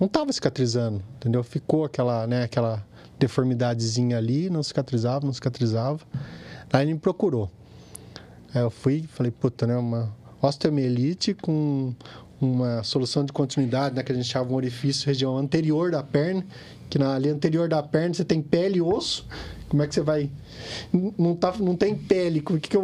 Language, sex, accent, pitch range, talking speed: Portuguese, male, Brazilian, 115-150 Hz, 175 wpm